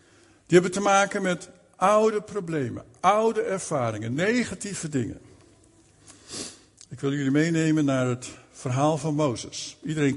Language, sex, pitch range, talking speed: Dutch, male, 130-195 Hz, 125 wpm